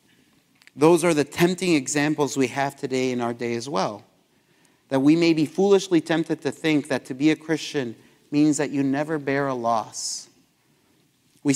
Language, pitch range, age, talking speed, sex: English, 120-150 Hz, 30-49, 175 wpm, male